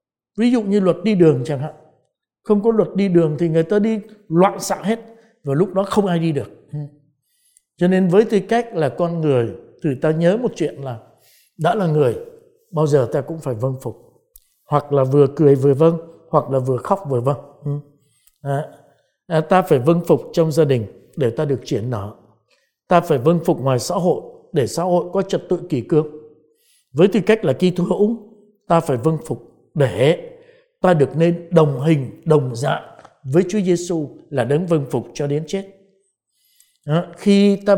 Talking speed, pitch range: 190 wpm, 145-195 Hz